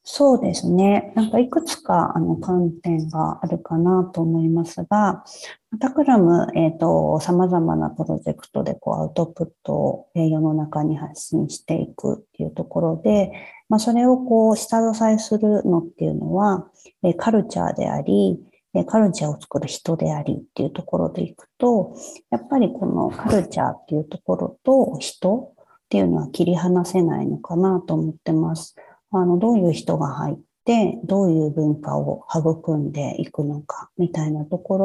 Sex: female